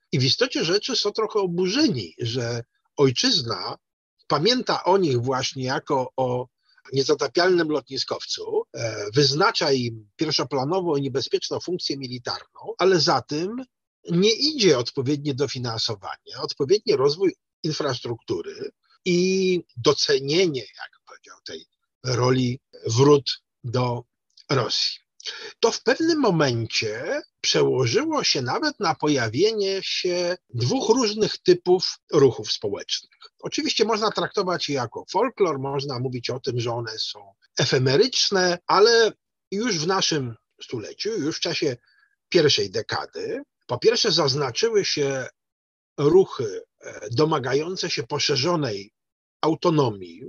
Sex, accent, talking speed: male, native, 110 wpm